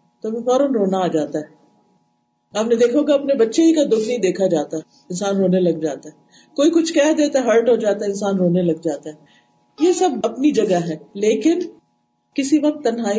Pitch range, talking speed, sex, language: 195-295 Hz, 210 wpm, female, Urdu